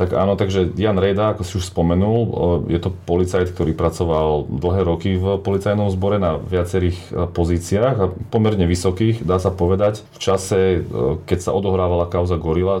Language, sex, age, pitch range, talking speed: Slovak, male, 30-49, 85-95 Hz, 160 wpm